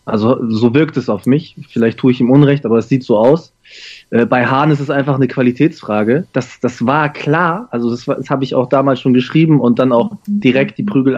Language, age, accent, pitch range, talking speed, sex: German, 20-39, German, 125-145 Hz, 230 wpm, male